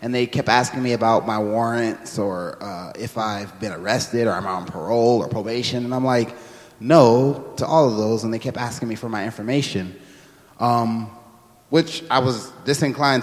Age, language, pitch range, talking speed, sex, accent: 20-39, English, 115-145 Hz, 185 wpm, male, American